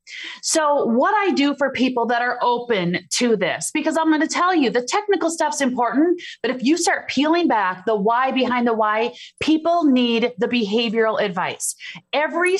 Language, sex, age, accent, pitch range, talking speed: English, female, 30-49, American, 225-300 Hz, 175 wpm